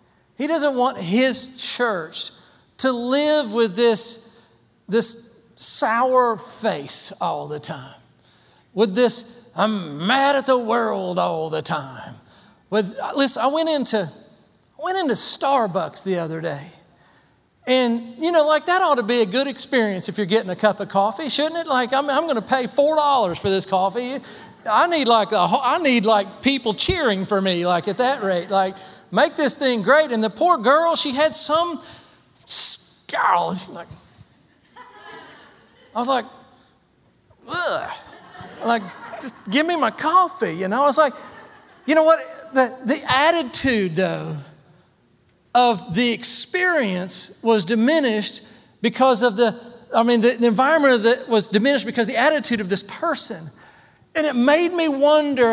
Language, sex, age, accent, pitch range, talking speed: English, male, 40-59, American, 205-275 Hz, 155 wpm